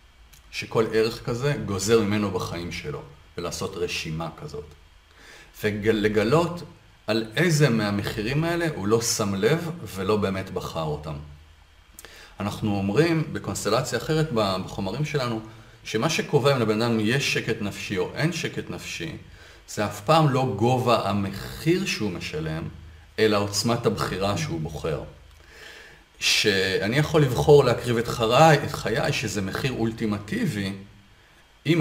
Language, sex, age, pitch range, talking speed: Hebrew, male, 40-59, 95-145 Hz, 125 wpm